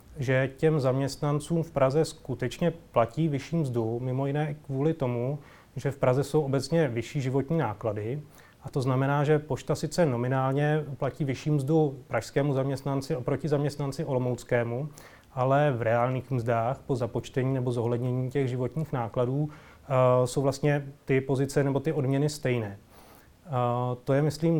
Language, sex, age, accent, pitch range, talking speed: Czech, male, 30-49, native, 125-145 Hz, 145 wpm